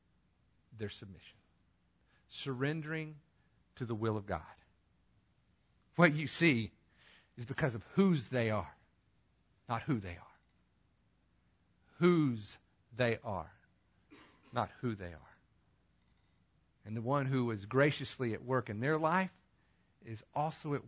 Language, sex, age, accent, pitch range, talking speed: English, male, 50-69, American, 105-150 Hz, 120 wpm